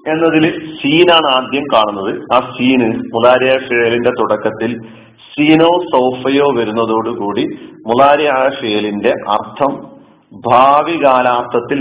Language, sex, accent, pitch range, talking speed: Malayalam, male, native, 115-145 Hz, 70 wpm